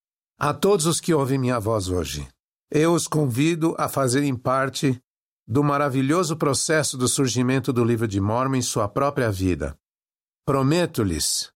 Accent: Brazilian